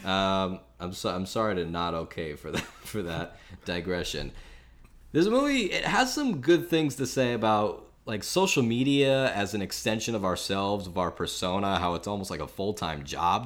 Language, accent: English, American